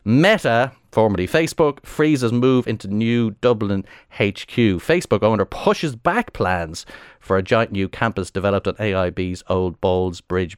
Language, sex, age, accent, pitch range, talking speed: English, male, 30-49, Irish, 95-120 Hz, 140 wpm